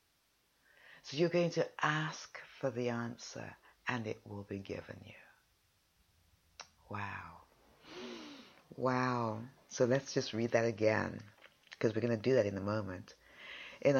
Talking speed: 135 wpm